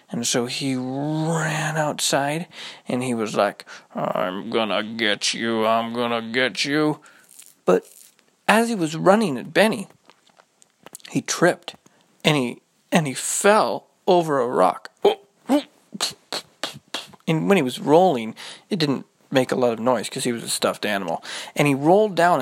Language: English